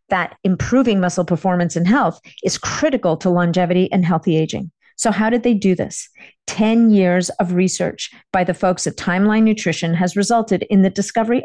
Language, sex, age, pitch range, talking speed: English, female, 50-69, 180-220 Hz, 180 wpm